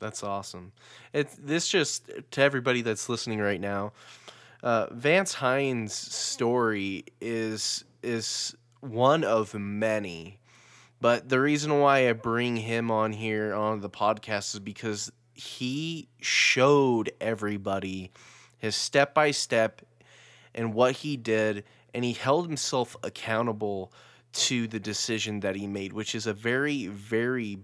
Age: 20-39